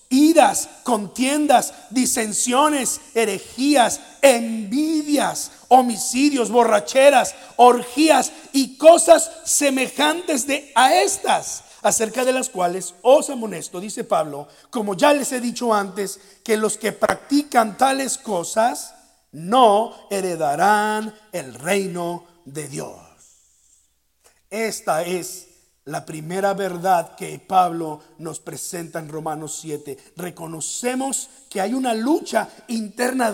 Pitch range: 175-255 Hz